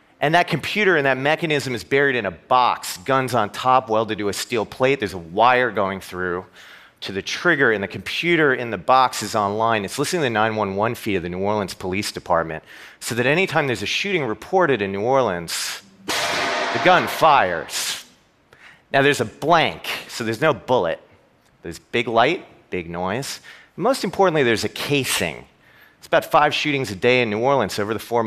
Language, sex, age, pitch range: Japanese, male, 40-59, 100-140 Hz